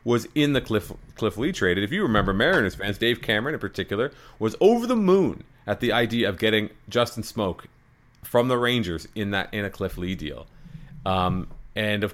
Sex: male